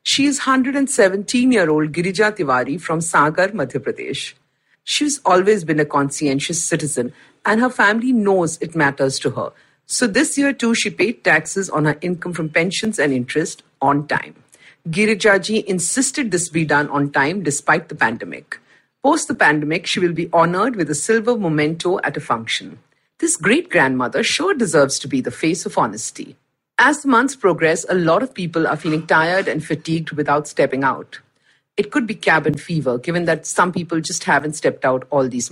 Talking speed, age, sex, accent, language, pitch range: 175 wpm, 50-69, female, Indian, English, 150-215 Hz